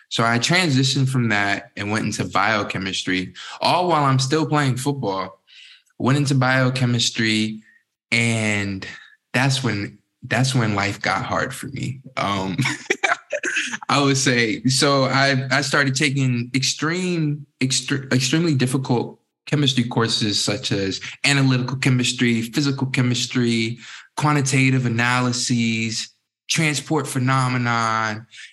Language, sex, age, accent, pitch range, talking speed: English, male, 20-39, American, 110-135 Hz, 110 wpm